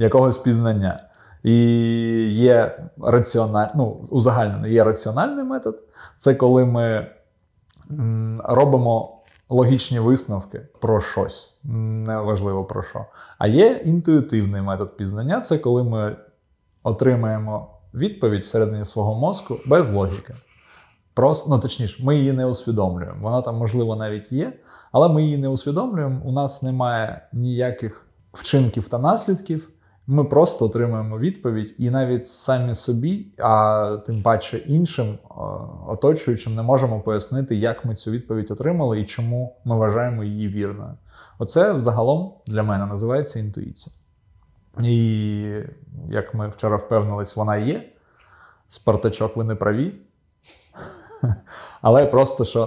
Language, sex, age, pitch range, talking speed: Ukrainian, male, 20-39, 110-130 Hz, 120 wpm